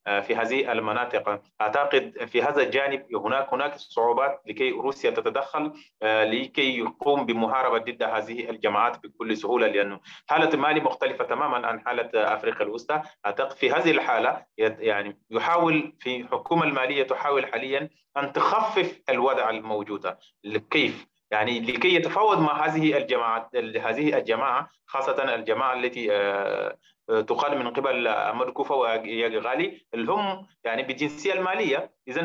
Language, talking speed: Arabic, 125 wpm